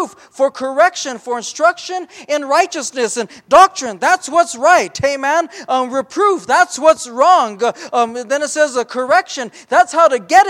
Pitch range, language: 245-325 Hz, English